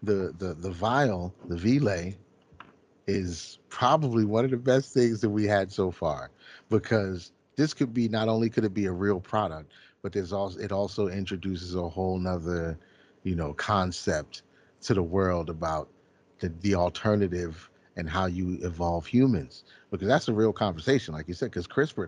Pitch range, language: 95-115 Hz, English